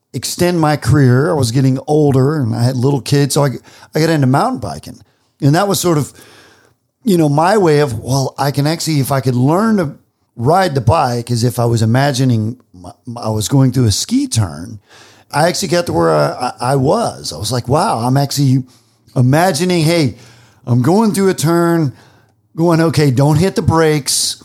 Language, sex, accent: English, male, American